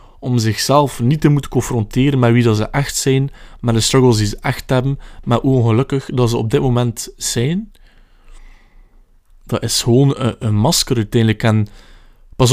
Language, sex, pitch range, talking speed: Dutch, male, 105-130 Hz, 175 wpm